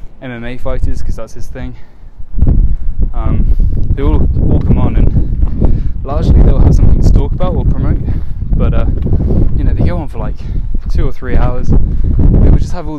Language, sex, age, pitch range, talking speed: English, male, 10-29, 90-130 Hz, 185 wpm